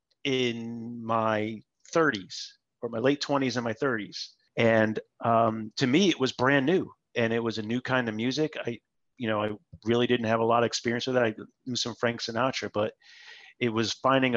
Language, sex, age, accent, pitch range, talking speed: English, male, 30-49, American, 110-125 Hz, 200 wpm